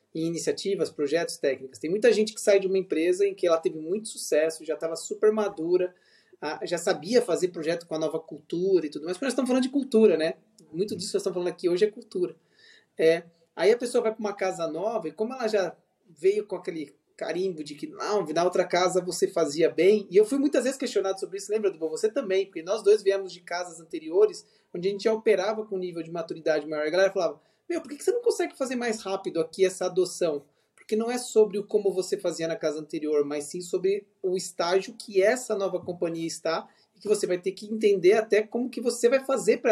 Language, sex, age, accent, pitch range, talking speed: Portuguese, male, 20-39, Brazilian, 180-245 Hz, 235 wpm